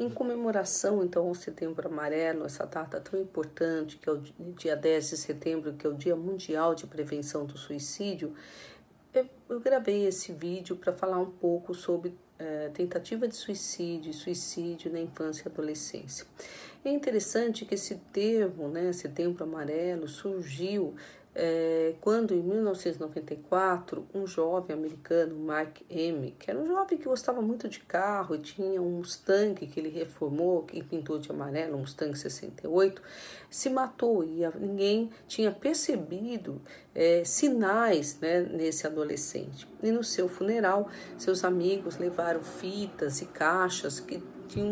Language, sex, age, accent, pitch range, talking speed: Portuguese, female, 50-69, Brazilian, 160-200 Hz, 145 wpm